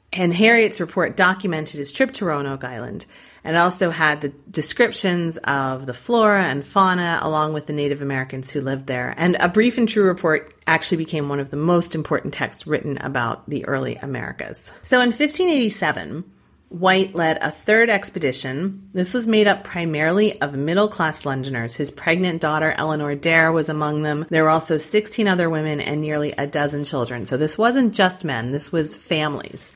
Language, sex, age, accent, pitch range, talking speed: English, female, 30-49, American, 140-190 Hz, 180 wpm